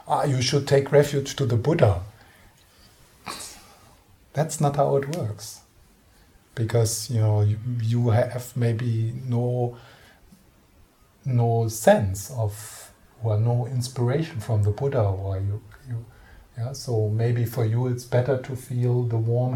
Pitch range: 100-120 Hz